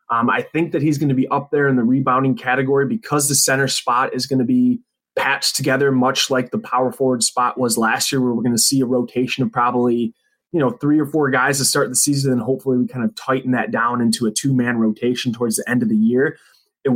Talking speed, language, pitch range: 255 wpm, English, 125-140 Hz